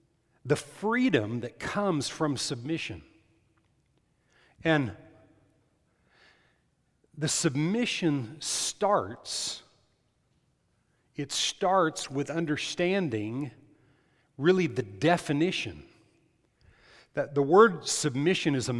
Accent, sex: American, male